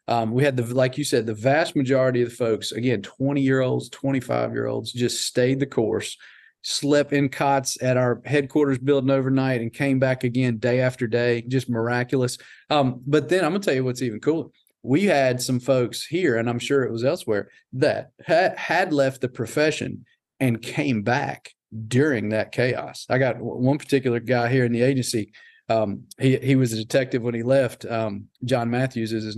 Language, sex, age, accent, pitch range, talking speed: English, male, 40-59, American, 115-135 Hz, 190 wpm